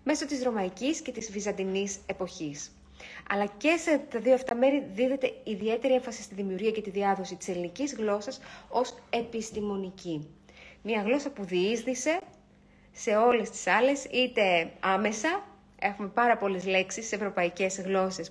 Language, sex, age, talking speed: Greek, female, 30-49, 145 wpm